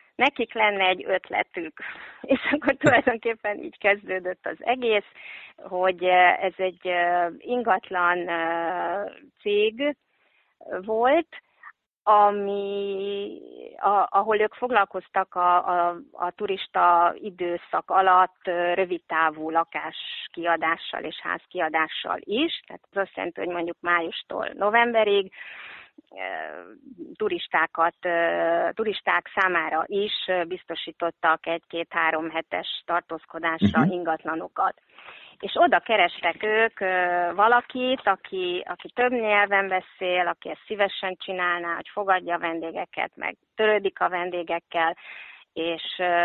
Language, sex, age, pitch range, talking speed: Hungarian, female, 30-49, 170-215 Hz, 90 wpm